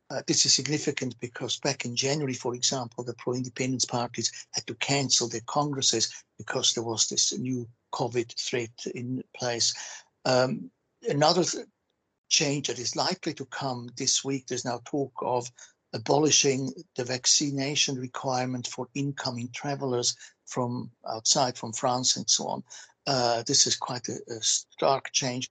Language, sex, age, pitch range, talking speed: English, male, 60-79, 120-135 Hz, 150 wpm